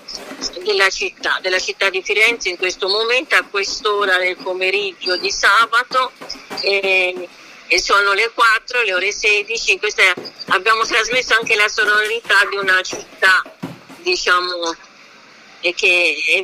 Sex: female